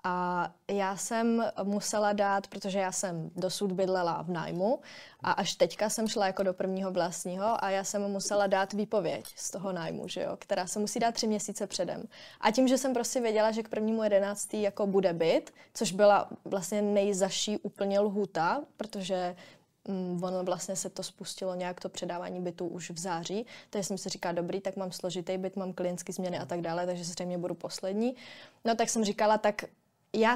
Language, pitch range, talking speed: Czech, 185-220 Hz, 190 wpm